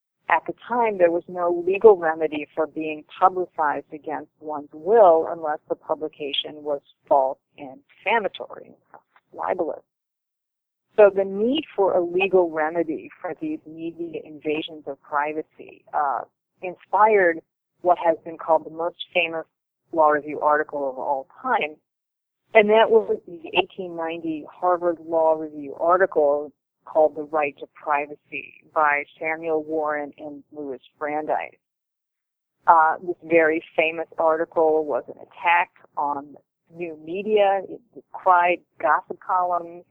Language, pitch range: English, 155-180 Hz